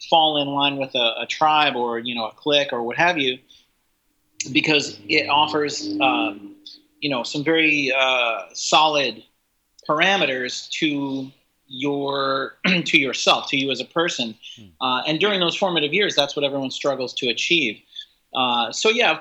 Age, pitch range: 30-49, 125-165 Hz